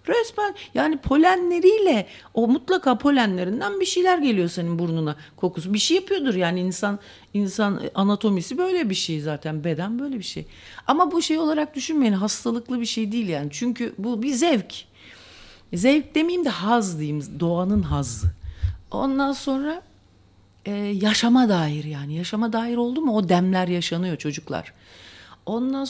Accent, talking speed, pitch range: Turkish, 145 wpm, 185-280 Hz